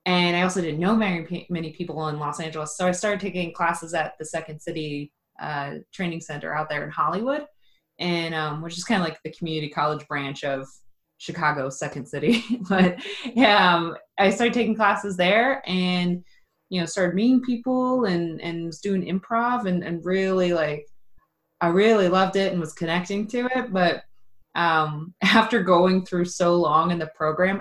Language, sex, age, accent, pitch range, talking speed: English, female, 20-39, American, 155-195 Hz, 185 wpm